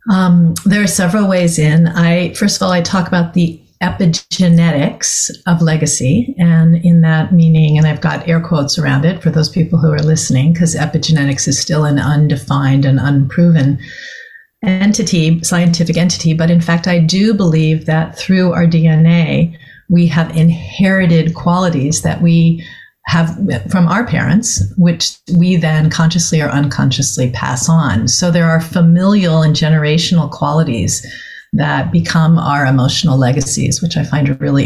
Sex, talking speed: female, 155 wpm